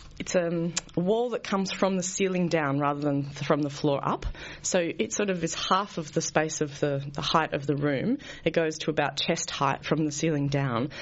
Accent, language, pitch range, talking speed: Australian, English, 145-170 Hz, 230 wpm